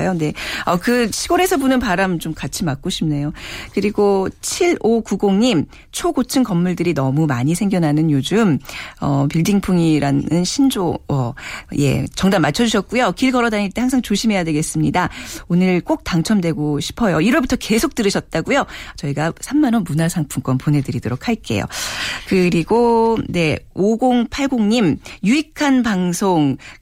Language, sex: Korean, female